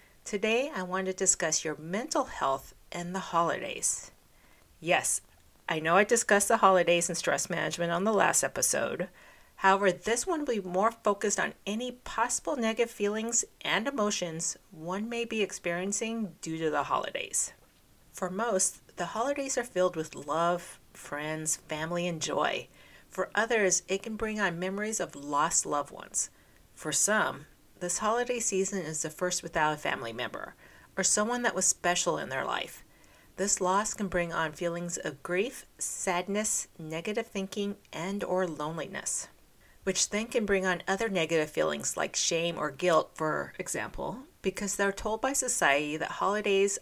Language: English